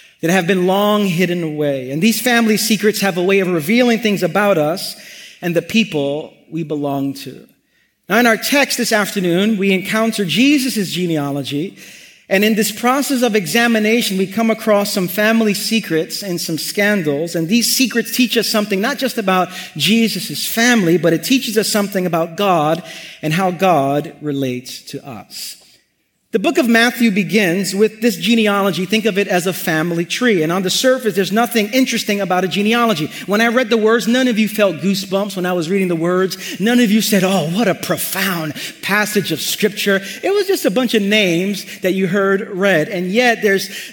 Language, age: English, 40-59